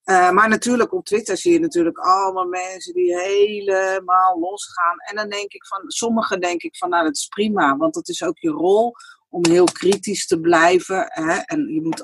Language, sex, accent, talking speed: Dutch, female, Dutch, 205 wpm